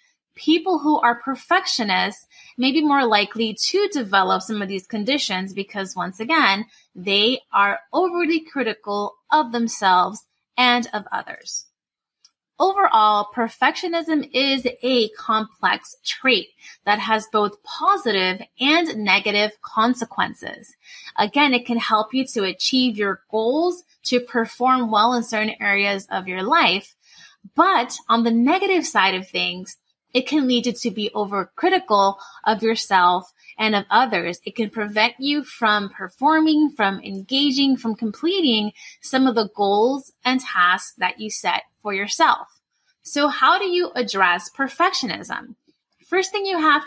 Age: 20-39